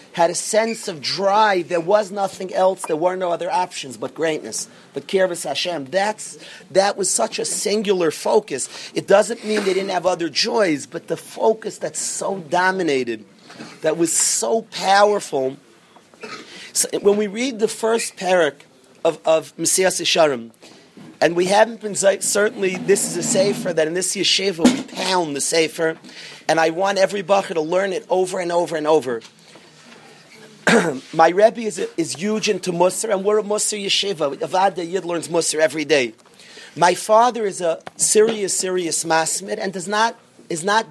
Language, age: English, 40-59